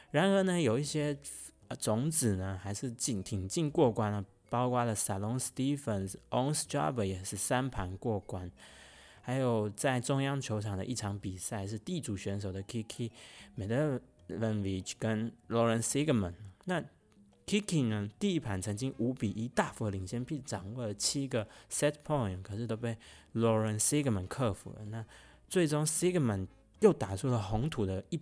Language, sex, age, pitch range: Chinese, male, 20-39, 100-130 Hz